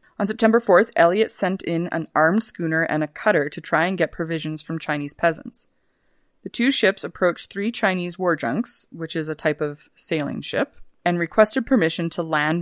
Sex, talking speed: female, 190 wpm